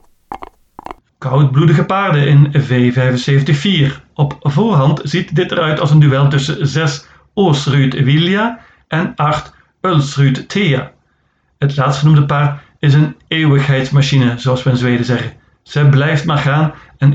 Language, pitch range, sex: Dutch, 135-155 Hz, male